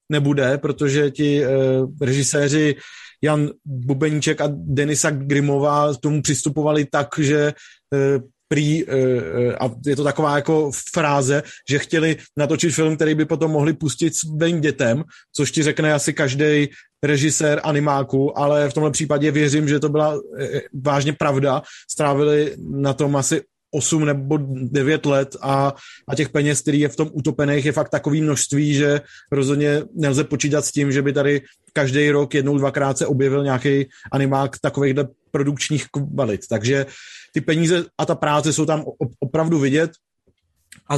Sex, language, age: male, Czech, 30-49